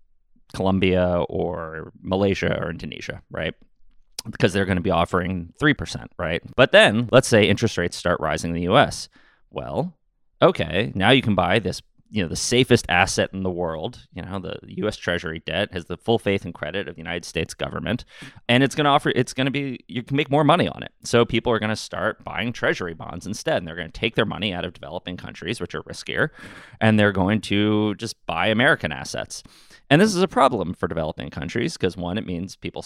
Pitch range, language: 85-115 Hz, English